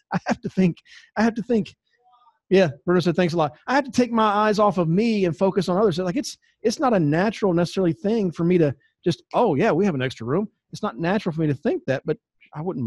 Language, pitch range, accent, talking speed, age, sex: English, 135-185 Hz, American, 270 wpm, 40-59, male